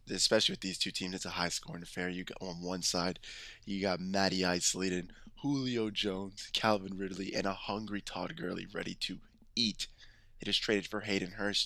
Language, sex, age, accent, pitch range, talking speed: English, male, 20-39, American, 95-115 Hz, 190 wpm